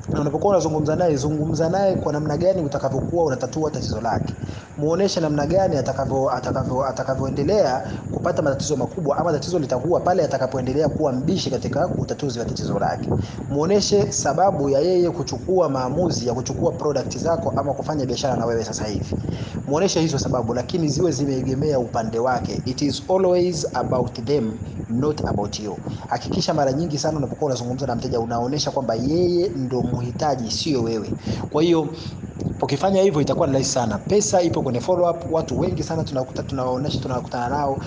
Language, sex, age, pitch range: Swahili, male, 30-49, 125-150 Hz